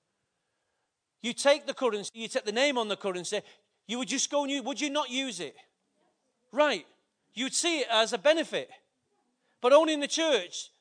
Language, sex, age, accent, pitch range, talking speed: English, male, 40-59, British, 170-250 Hz, 190 wpm